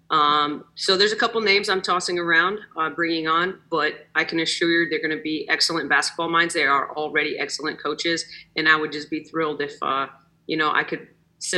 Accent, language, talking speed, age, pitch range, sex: American, English, 220 wpm, 30-49, 160-175 Hz, female